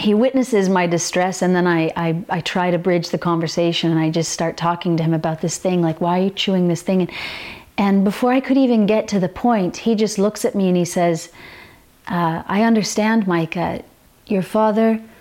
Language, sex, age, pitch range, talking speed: English, female, 40-59, 175-225 Hz, 215 wpm